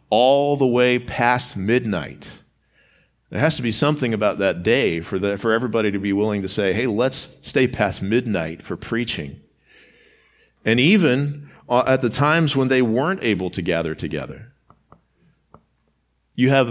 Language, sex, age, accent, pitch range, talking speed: English, male, 40-59, American, 100-130 Hz, 150 wpm